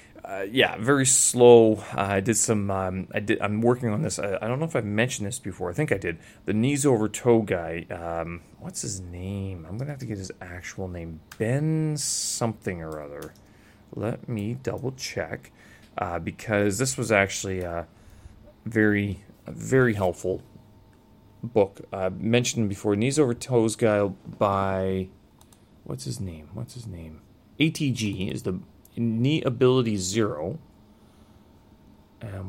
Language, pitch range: English, 90-115 Hz